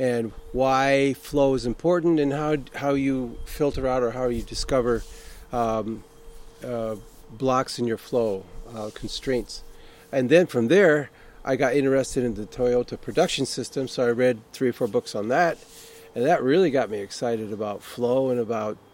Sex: male